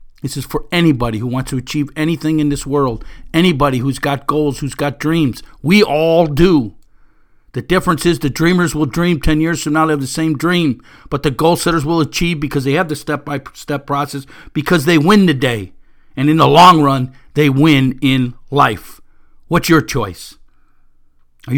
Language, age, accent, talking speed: English, 50-69, American, 190 wpm